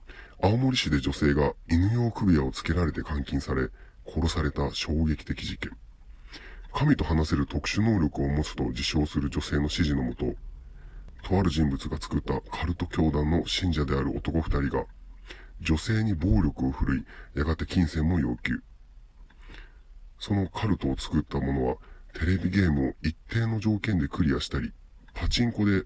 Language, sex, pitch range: Japanese, female, 70-95 Hz